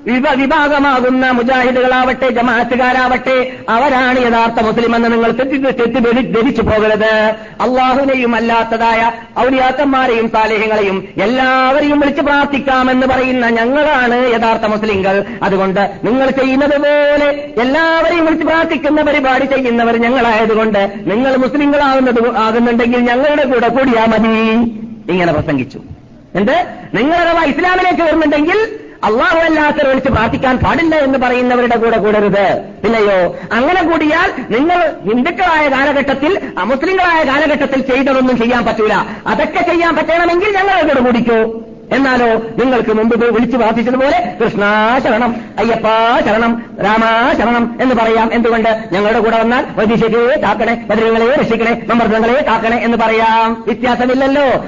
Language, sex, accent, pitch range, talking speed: Malayalam, female, native, 225-285 Hz, 105 wpm